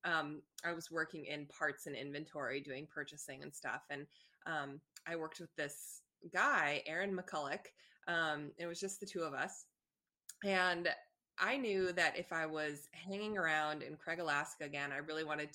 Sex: female